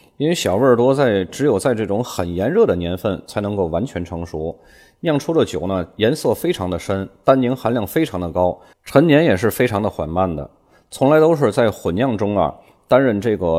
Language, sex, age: Chinese, male, 20-39